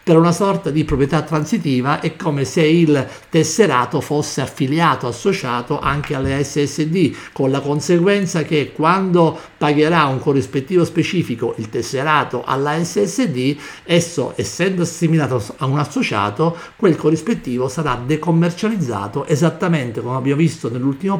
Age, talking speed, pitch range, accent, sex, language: 50-69, 125 wpm, 125-160 Hz, native, male, Italian